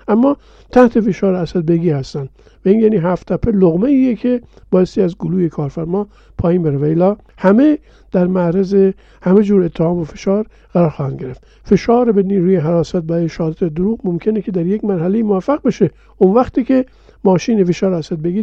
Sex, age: male, 50-69